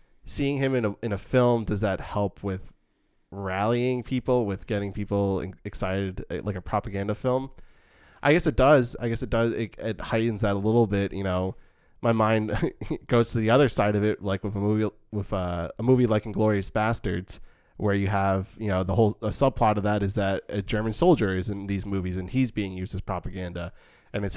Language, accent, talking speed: English, American, 210 wpm